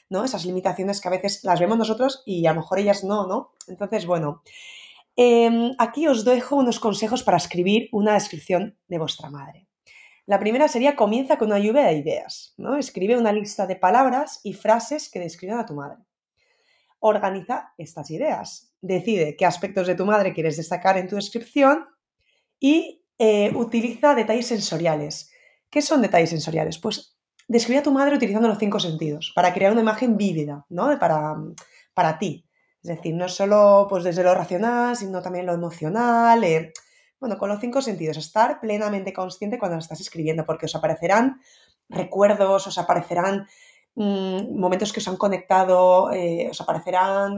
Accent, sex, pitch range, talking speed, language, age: Spanish, female, 175-230 Hz, 170 wpm, Spanish, 20-39